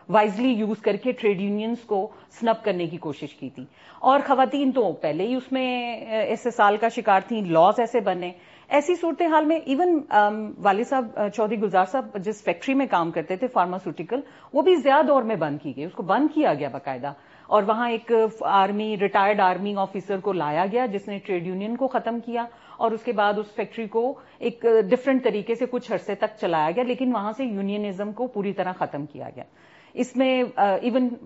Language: Urdu